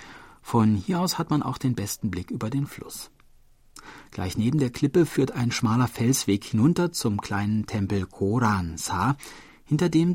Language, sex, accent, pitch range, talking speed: German, male, German, 100-140 Hz, 160 wpm